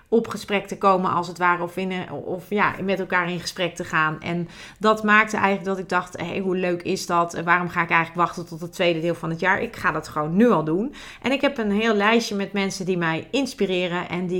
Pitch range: 170-205 Hz